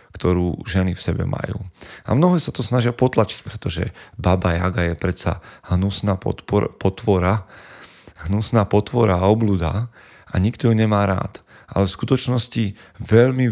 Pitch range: 90-110 Hz